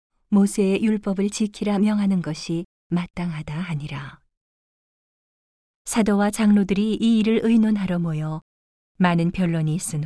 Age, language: 40-59, Korean